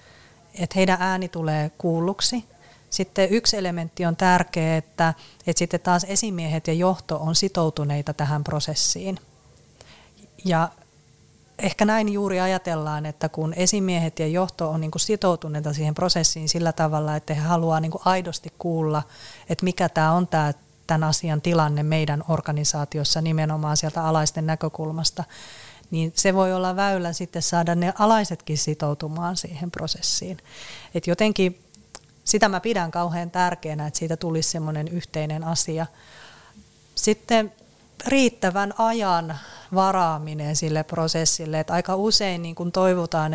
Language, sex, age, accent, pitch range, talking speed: Finnish, female, 30-49, native, 155-185 Hz, 125 wpm